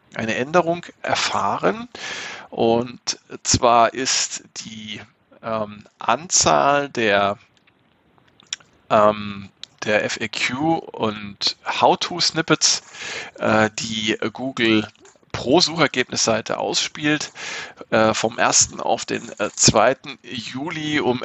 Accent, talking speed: German, 80 wpm